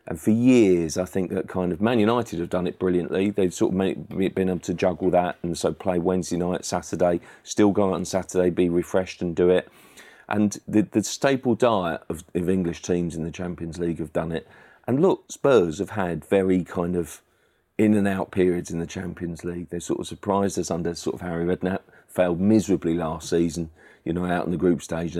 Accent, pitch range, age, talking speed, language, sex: British, 85-95 Hz, 40-59, 220 wpm, English, male